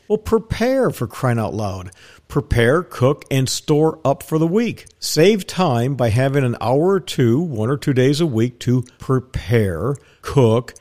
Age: 50-69